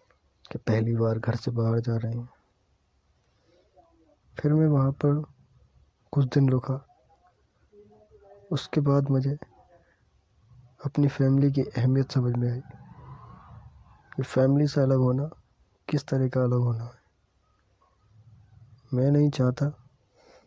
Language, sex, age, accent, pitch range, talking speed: Hindi, male, 20-39, native, 120-140 Hz, 115 wpm